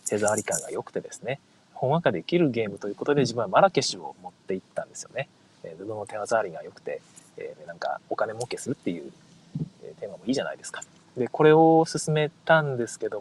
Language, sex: Japanese, male